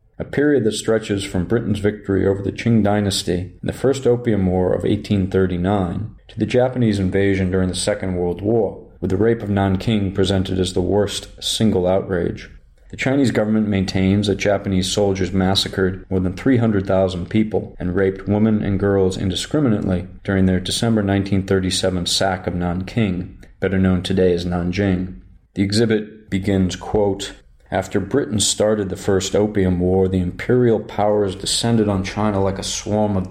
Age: 40-59